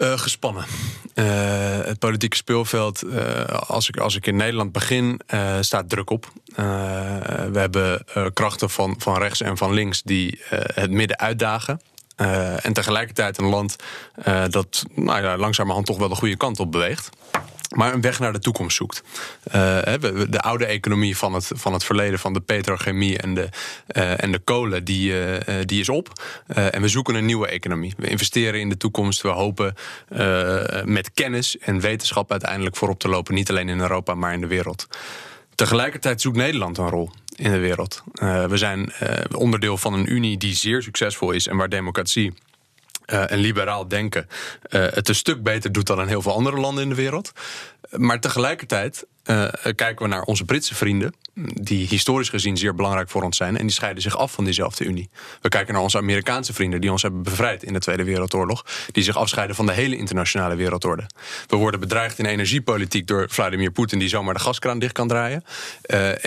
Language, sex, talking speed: Dutch, male, 190 wpm